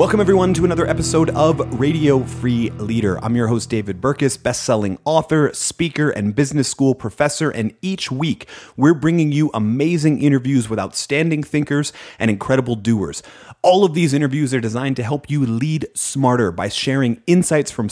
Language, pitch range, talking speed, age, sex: English, 115-150 Hz, 165 wpm, 30-49, male